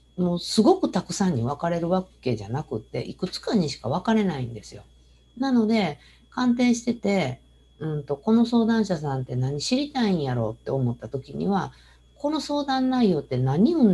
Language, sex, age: Japanese, female, 50-69